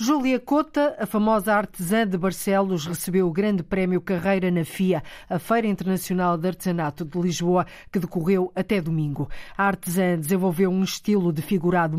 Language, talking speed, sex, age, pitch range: Portuguese, 160 wpm, female, 50-69, 175-205 Hz